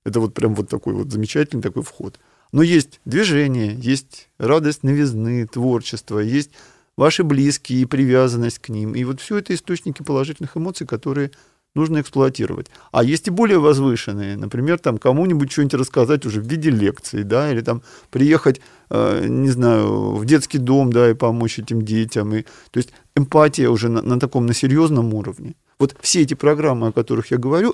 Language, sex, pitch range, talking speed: Russian, male, 120-150 Hz, 170 wpm